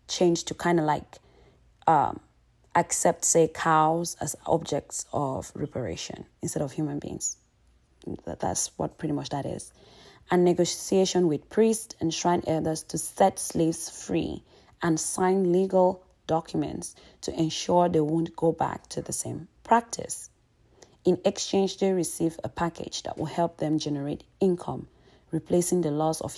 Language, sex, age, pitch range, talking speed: English, female, 30-49, 150-175 Hz, 145 wpm